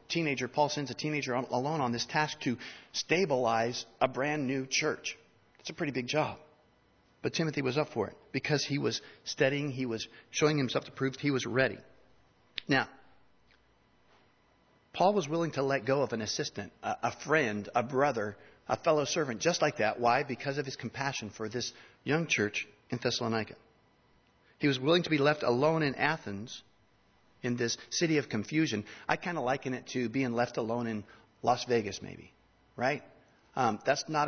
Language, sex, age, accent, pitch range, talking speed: English, male, 50-69, American, 115-150 Hz, 175 wpm